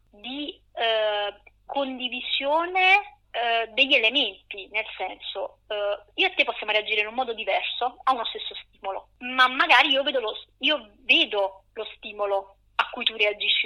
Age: 20-39